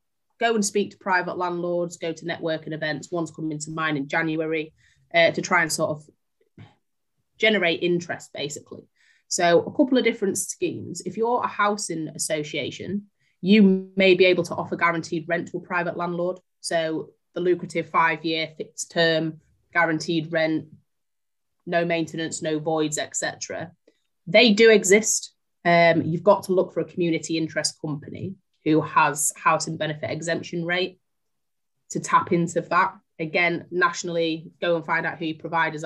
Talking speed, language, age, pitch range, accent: 155 wpm, English, 30-49, 160-180 Hz, British